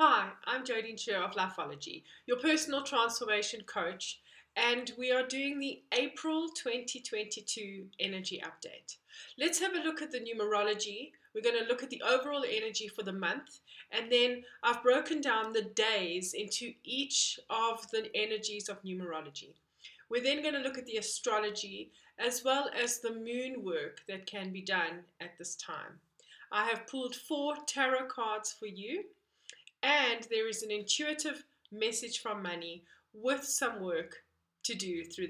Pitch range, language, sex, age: 205-265 Hz, English, female, 30-49